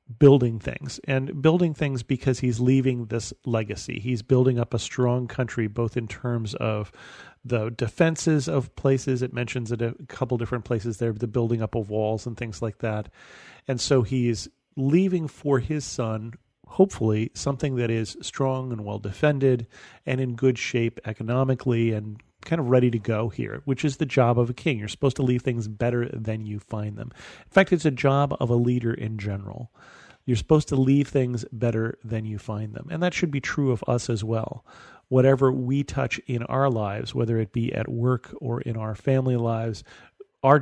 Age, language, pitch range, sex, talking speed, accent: 40-59, English, 115-135 Hz, male, 200 wpm, American